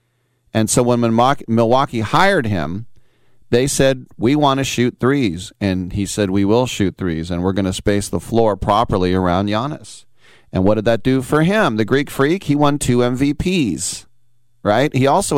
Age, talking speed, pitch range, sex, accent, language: 40-59, 185 wpm, 110-130 Hz, male, American, English